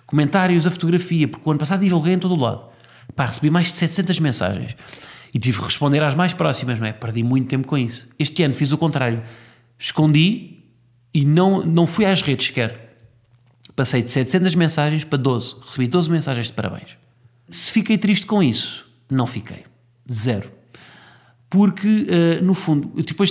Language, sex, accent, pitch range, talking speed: Portuguese, male, Portuguese, 120-170 Hz, 180 wpm